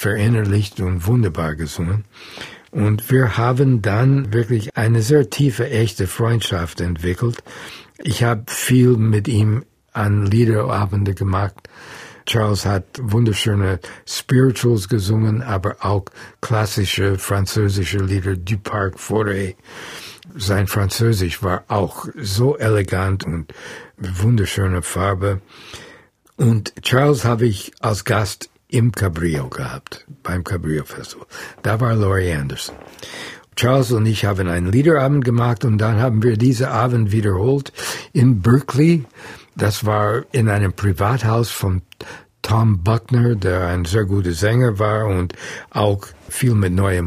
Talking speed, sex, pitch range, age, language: 120 wpm, male, 95-120 Hz, 60-79, German